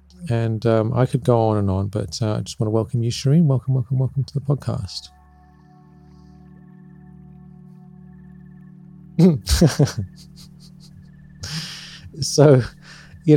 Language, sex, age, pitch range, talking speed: English, male, 40-59, 105-140 Hz, 110 wpm